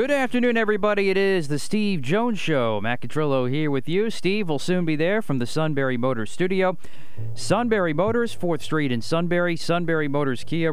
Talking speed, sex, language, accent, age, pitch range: 185 wpm, male, English, American, 40-59, 120-160 Hz